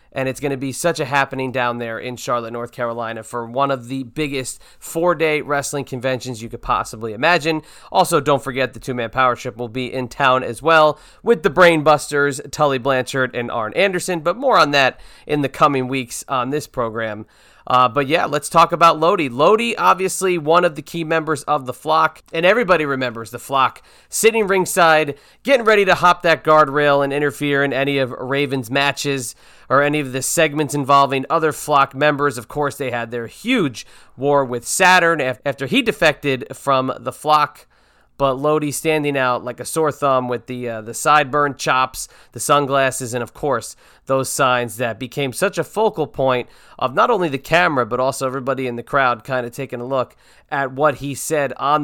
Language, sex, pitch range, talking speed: English, male, 130-160 Hz, 195 wpm